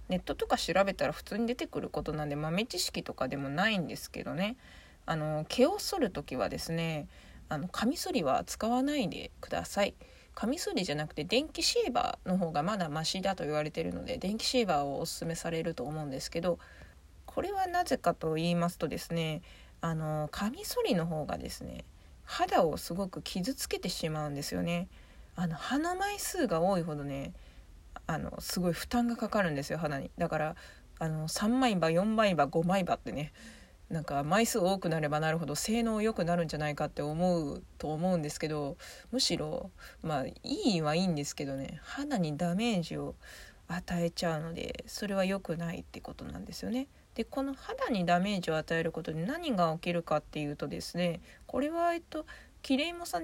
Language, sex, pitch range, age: Japanese, female, 155-235 Hz, 20-39